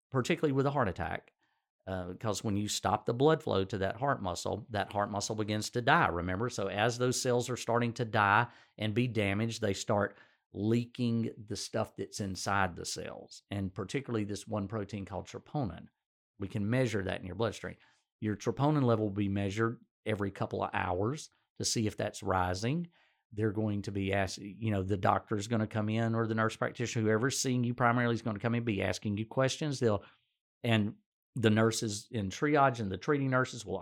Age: 40-59